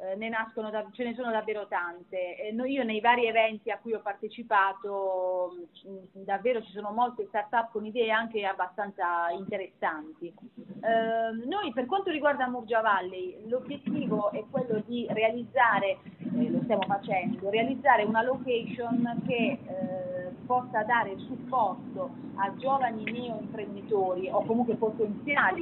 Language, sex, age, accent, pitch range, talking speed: Italian, female, 30-49, native, 200-245 Hz, 150 wpm